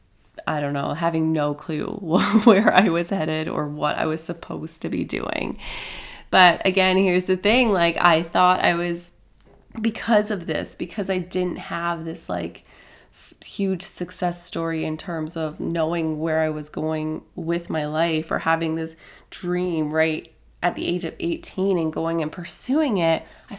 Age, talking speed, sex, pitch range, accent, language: 20-39, 170 wpm, female, 165-200 Hz, American, English